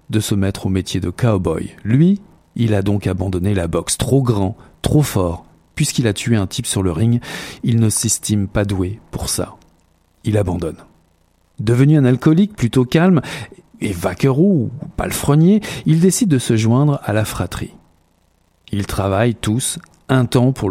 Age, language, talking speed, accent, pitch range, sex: 50-69, French, 170 wpm, French, 95-135 Hz, male